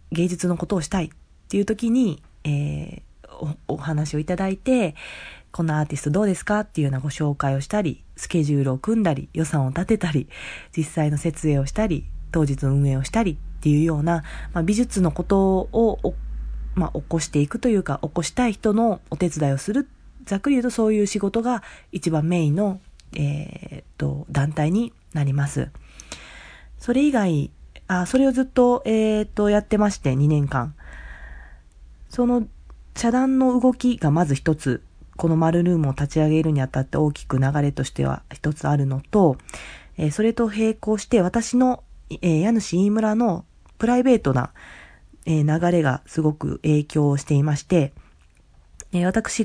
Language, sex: Japanese, female